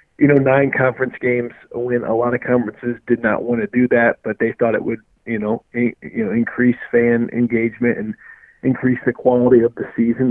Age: 40-59